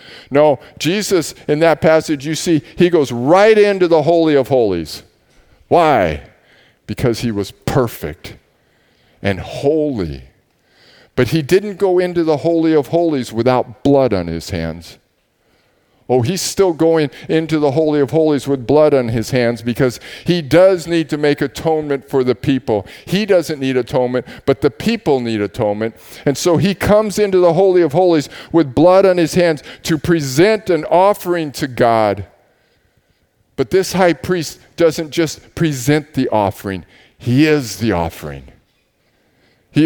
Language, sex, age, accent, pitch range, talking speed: English, male, 50-69, American, 125-170 Hz, 155 wpm